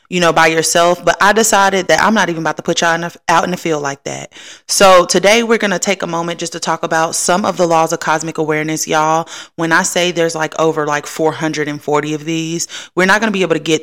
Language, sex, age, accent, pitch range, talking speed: English, female, 30-49, American, 155-180 Hz, 260 wpm